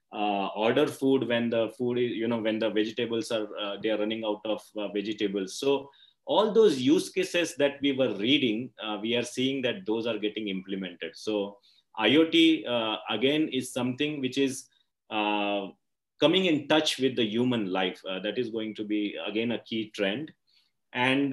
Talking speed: 185 wpm